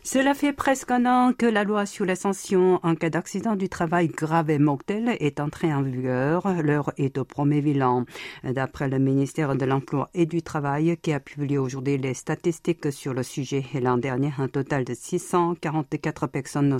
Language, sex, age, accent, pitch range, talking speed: French, female, 50-69, French, 140-175 Hz, 185 wpm